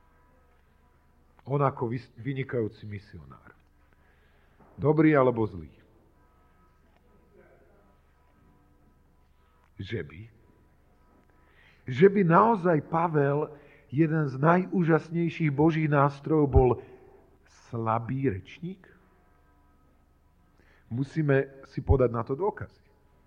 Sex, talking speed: male, 70 wpm